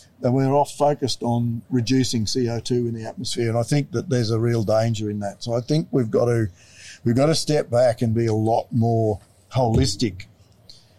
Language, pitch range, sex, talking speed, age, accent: English, 100-120 Hz, male, 200 wpm, 50-69, Australian